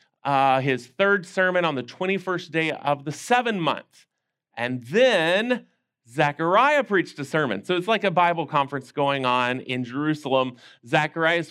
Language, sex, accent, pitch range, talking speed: English, male, American, 125-170 Hz, 145 wpm